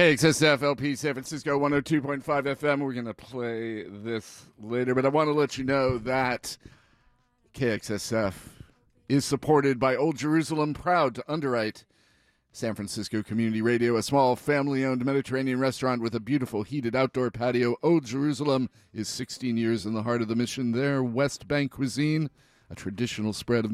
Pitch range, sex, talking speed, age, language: 110-135 Hz, male, 160 wpm, 40-59, English